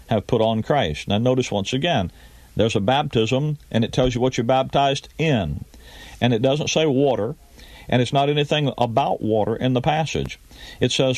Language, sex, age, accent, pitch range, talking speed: English, male, 40-59, American, 105-140 Hz, 190 wpm